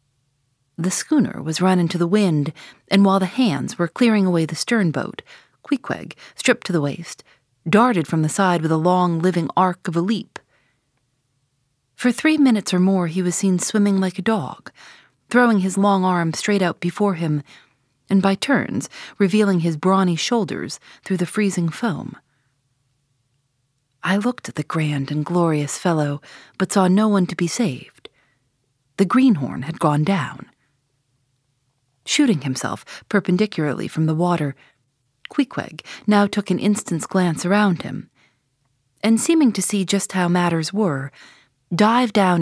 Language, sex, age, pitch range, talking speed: English, female, 30-49, 140-205 Hz, 155 wpm